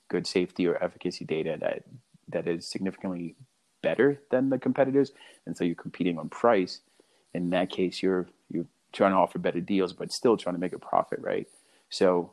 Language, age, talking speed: English, 30-49, 185 wpm